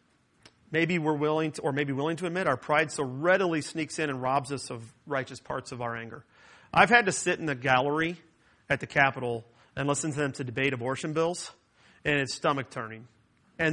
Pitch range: 130-165 Hz